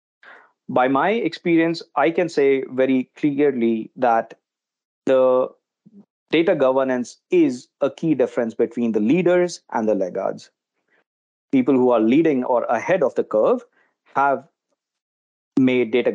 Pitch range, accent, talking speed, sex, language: 120-160 Hz, Indian, 125 wpm, male, English